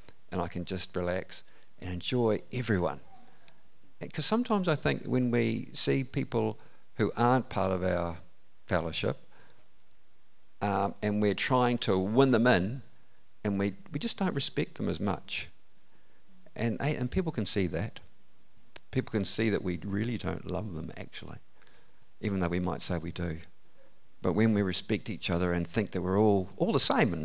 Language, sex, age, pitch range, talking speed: English, male, 50-69, 85-115 Hz, 170 wpm